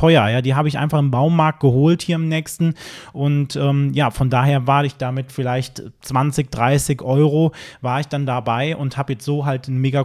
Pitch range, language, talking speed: 130-150 Hz, German, 205 wpm